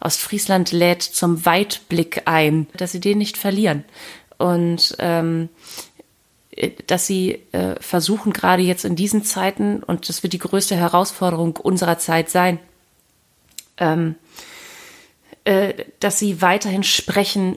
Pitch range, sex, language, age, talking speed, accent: 165-195 Hz, female, German, 30-49, 125 wpm, German